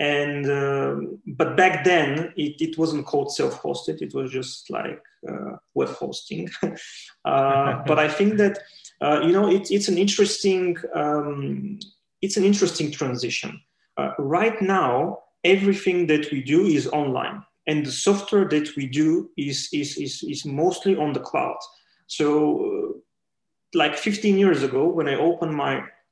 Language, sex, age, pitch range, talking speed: English, male, 30-49, 145-195 Hz, 160 wpm